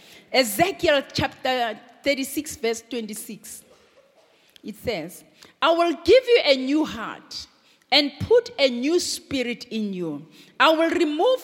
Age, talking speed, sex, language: 40-59, 125 wpm, female, English